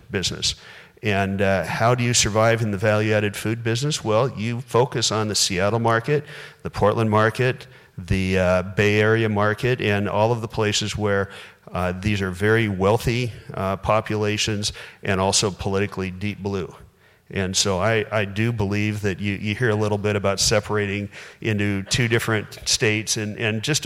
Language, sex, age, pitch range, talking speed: English, male, 40-59, 100-115 Hz, 170 wpm